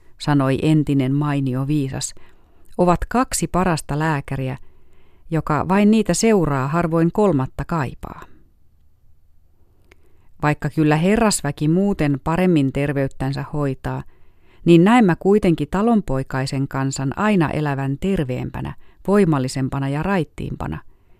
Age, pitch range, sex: 30-49, 125-170 Hz, female